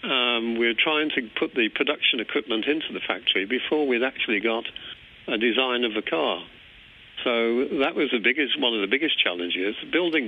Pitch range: 105-135 Hz